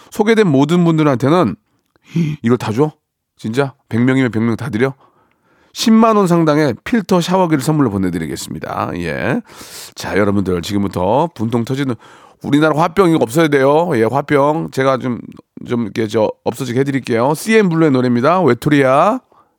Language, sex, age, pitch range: Korean, male, 40-59, 95-140 Hz